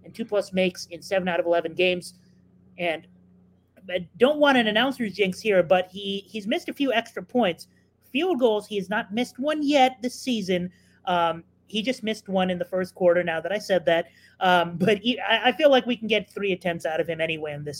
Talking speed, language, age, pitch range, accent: 225 wpm, English, 30-49, 170-210 Hz, American